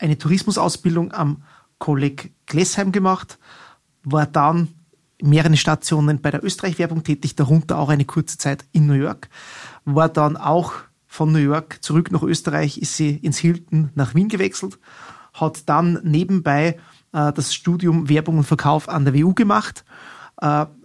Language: German